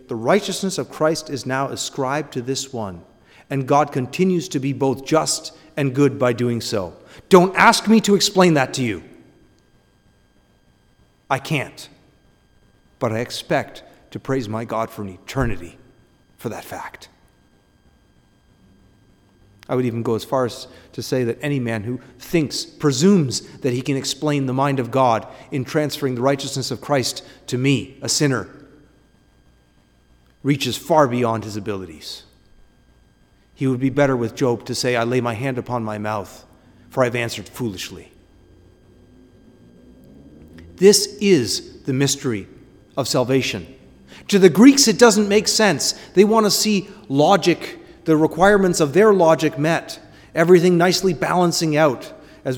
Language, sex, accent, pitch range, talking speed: English, male, American, 120-155 Hz, 150 wpm